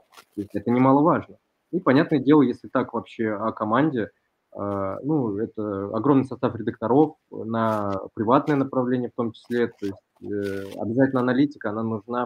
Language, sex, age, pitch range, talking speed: Russian, male, 20-39, 105-125 Hz, 140 wpm